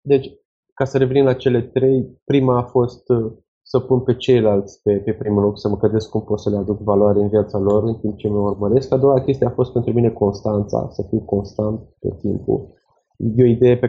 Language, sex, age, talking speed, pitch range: Romanian, male, 20-39, 225 wpm, 105-120 Hz